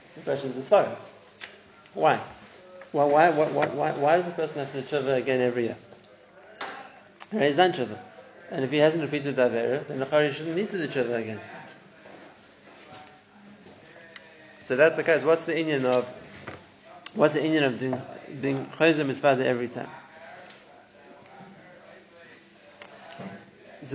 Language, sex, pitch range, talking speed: English, male, 130-160 Hz, 145 wpm